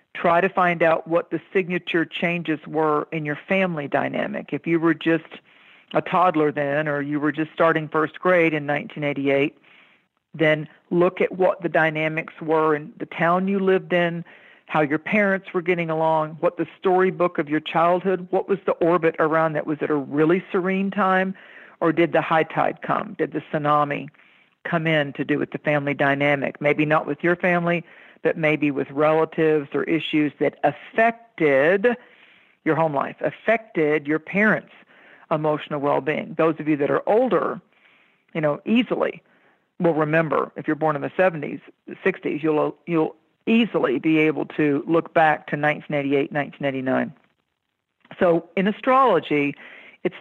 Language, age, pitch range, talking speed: English, 50-69, 155-185 Hz, 165 wpm